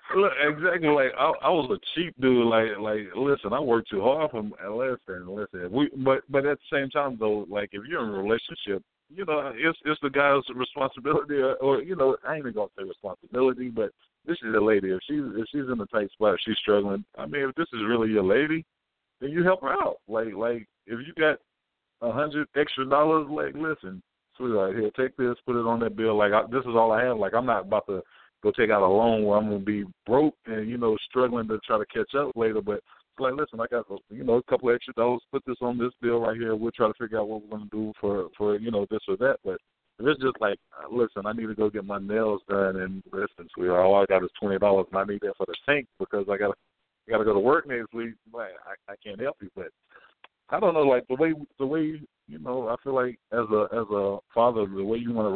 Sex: male